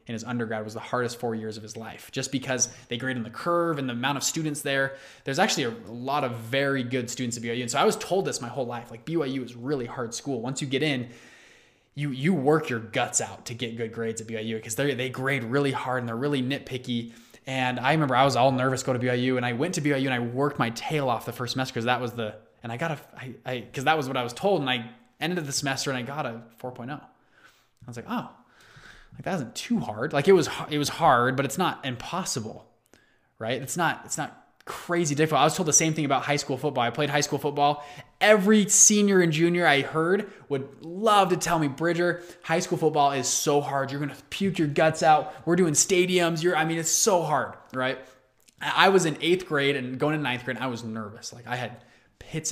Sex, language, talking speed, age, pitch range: male, English, 250 wpm, 20-39, 120-155 Hz